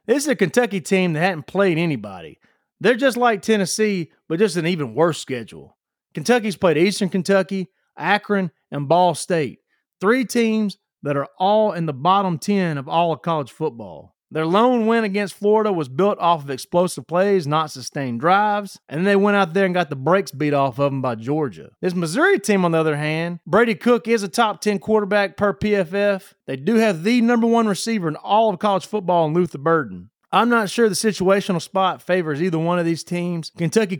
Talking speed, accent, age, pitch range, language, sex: 205 wpm, American, 30-49, 155-205 Hz, English, male